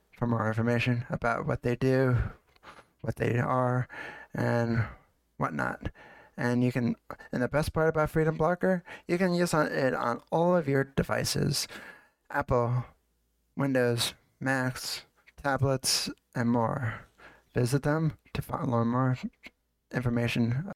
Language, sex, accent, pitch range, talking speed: English, male, American, 120-145 Hz, 125 wpm